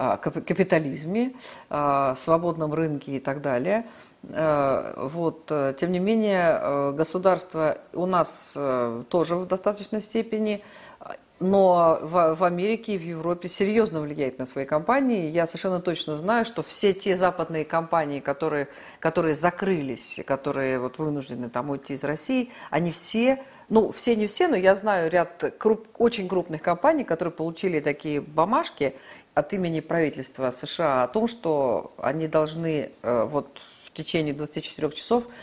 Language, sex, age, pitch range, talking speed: Russian, female, 50-69, 145-195 Hz, 130 wpm